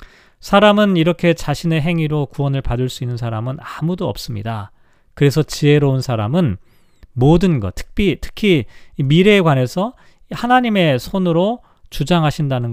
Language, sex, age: Korean, male, 40-59